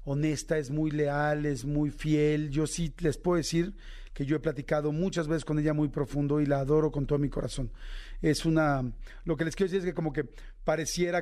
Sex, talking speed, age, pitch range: male, 220 wpm, 40-59, 140-155 Hz